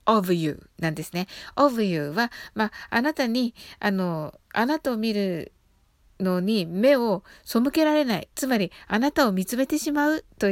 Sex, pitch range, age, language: female, 185-245 Hz, 60-79, Japanese